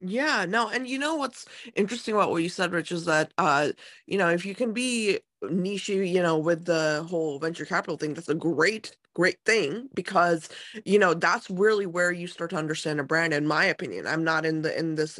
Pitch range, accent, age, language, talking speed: 160-200 Hz, American, 20-39, English, 220 wpm